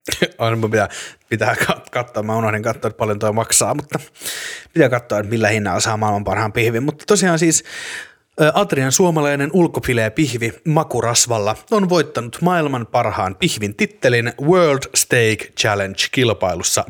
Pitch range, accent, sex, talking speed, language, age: 110-150 Hz, native, male, 140 wpm, Finnish, 30-49